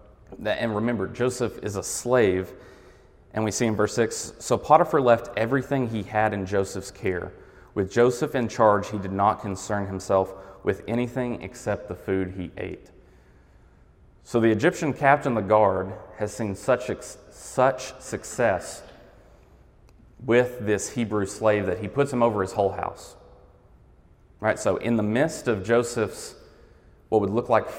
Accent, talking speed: American, 155 wpm